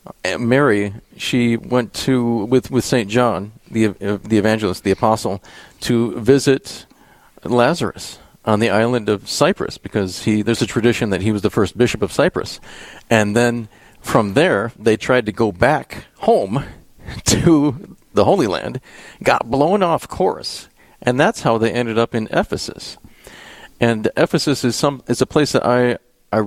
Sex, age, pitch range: male, 40-59, 105-125 Hz